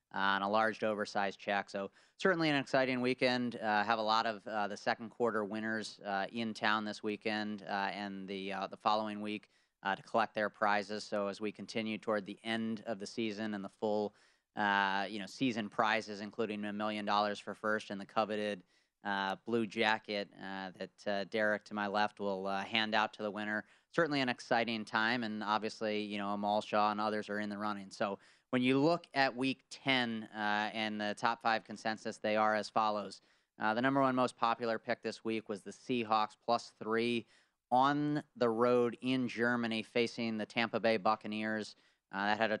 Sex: male